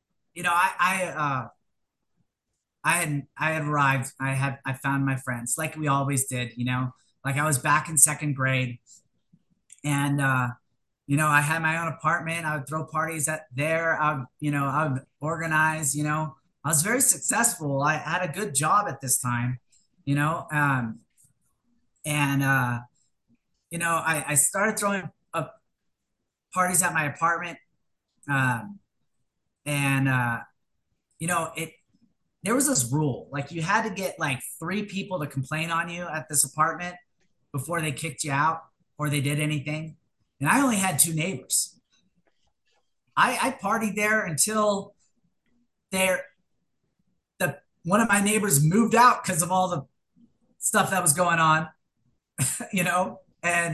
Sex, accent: male, American